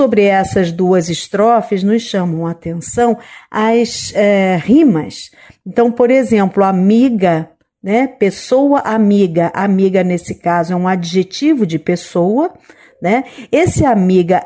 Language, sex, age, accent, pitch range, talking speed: Portuguese, female, 50-69, Brazilian, 190-250 Hz, 120 wpm